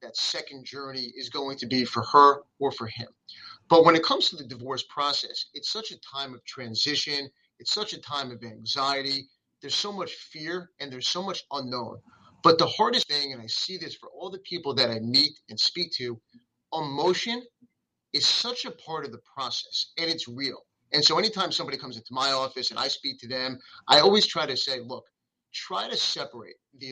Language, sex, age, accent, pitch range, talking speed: English, male, 30-49, American, 125-165 Hz, 205 wpm